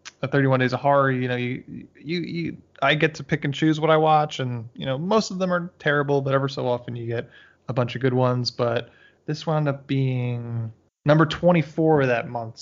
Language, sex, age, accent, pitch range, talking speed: English, male, 20-39, American, 125-150 Hz, 220 wpm